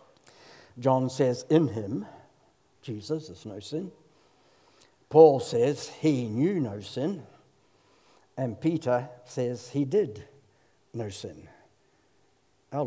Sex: male